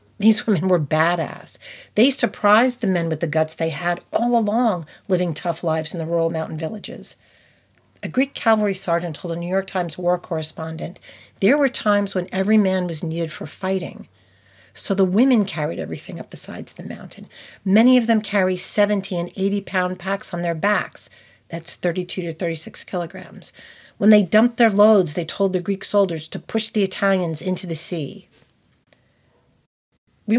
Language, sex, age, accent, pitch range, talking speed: English, female, 50-69, American, 170-205 Hz, 175 wpm